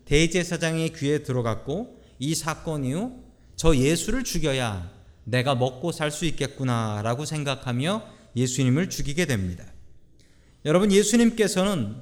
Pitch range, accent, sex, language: 115-175 Hz, native, male, Korean